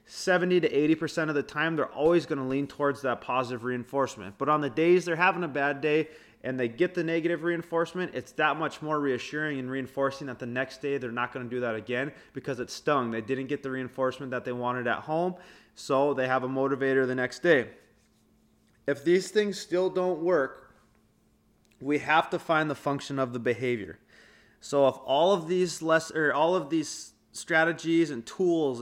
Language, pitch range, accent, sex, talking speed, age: English, 125-155 Hz, American, male, 205 wpm, 20-39